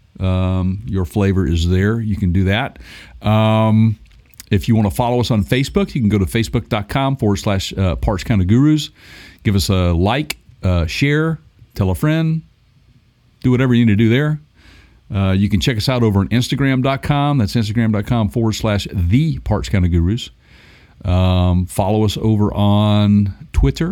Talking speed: 175 wpm